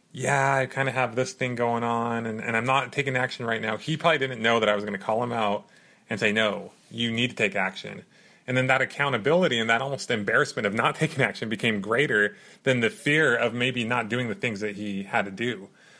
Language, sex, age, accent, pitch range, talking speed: English, male, 30-49, American, 105-140 Hz, 245 wpm